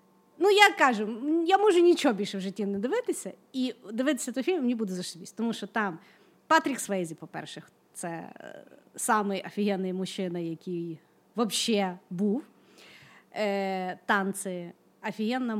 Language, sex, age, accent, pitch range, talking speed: Ukrainian, female, 30-49, native, 185-240 Hz, 125 wpm